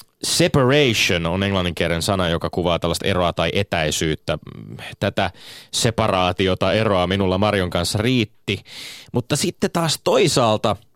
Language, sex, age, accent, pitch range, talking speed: Finnish, male, 30-49, native, 85-120 Hz, 115 wpm